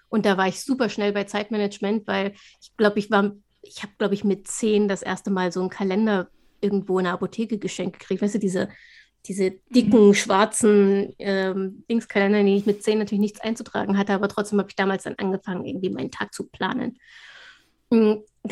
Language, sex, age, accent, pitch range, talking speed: German, female, 30-49, German, 205-240 Hz, 200 wpm